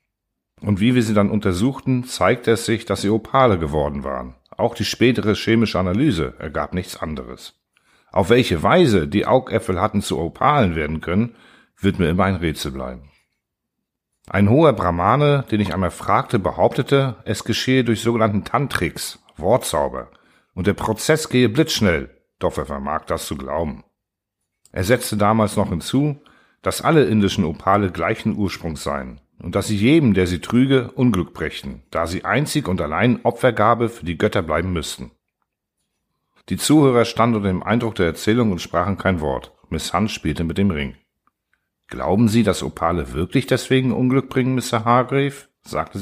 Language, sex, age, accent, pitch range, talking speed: German, male, 50-69, German, 90-120 Hz, 160 wpm